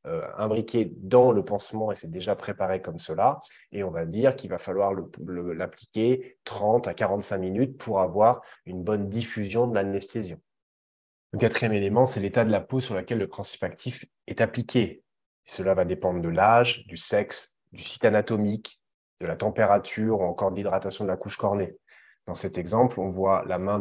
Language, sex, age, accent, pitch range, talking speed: French, male, 20-39, French, 90-110 Hz, 190 wpm